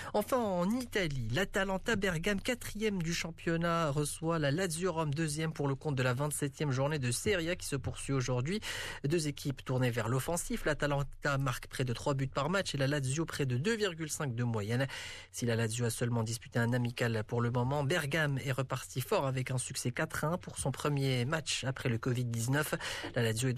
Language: Arabic